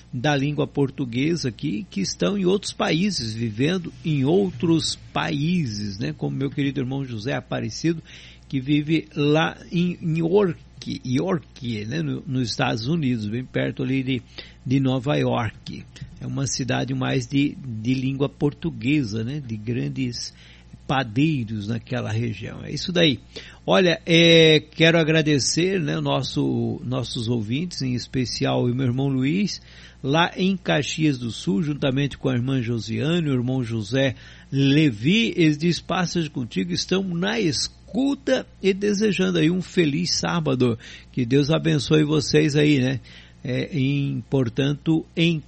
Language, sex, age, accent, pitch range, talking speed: Portuguese, male, 50-69, Brazilian, 125-165 Hz, 140 wpm